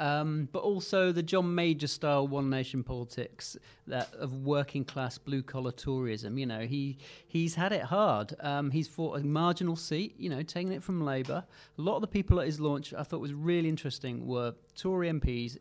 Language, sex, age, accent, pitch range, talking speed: English, male, 30-49, British, 130-170 Hz, 185 wpm